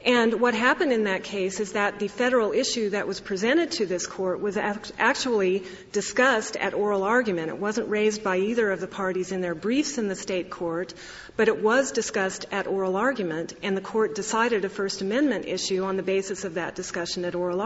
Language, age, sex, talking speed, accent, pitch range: English, 40-59, female, 210 wpm, American, 185-225 Hz